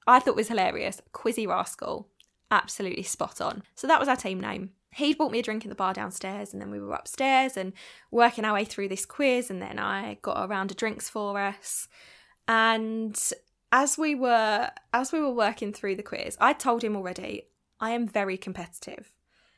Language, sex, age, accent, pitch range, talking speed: English, female, 10-29, British, 195-245 Hz, 200 wpm